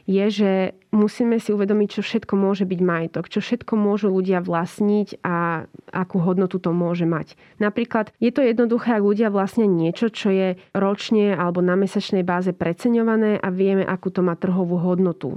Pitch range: 175-205 Hz